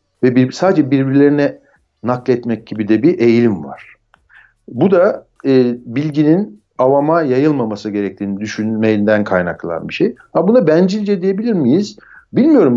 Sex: male